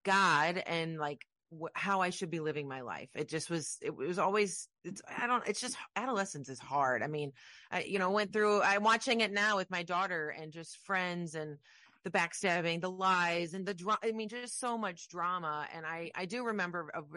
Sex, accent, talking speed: female, American, 215 wpm